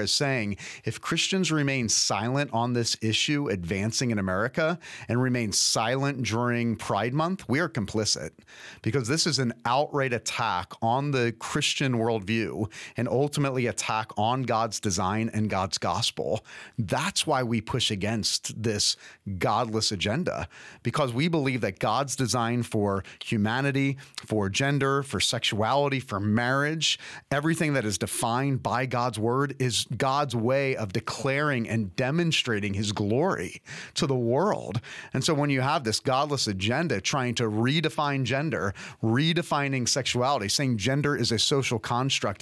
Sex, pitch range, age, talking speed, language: male, 110-140 Hz, 30-49, 145 wpm, English